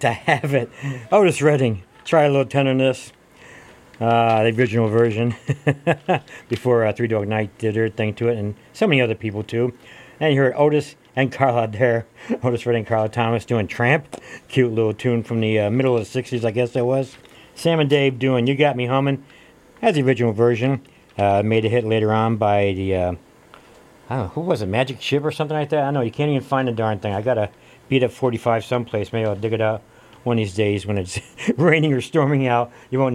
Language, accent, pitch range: English, American, 110-135 Hz